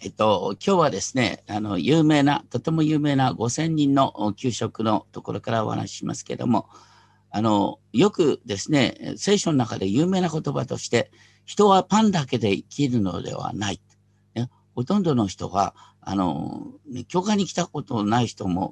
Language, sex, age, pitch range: Japanese, male, 50-69, 105-165 Hz